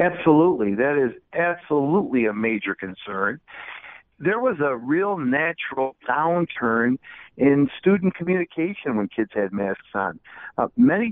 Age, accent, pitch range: 60-79, American, 115-185 Hz